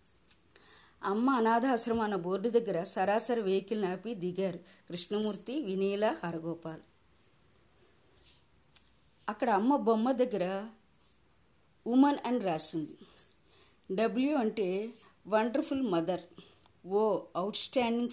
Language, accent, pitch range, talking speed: Telugu, native, 180-235 Hz, 85 wpm